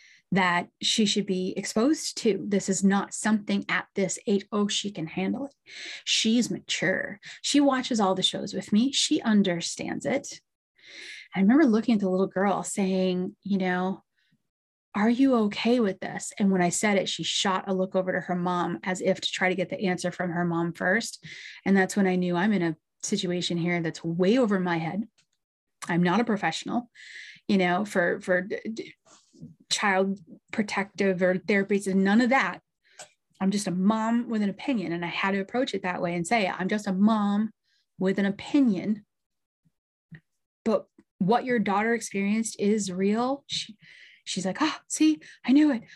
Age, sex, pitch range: 30-49, female, 185-225 Hz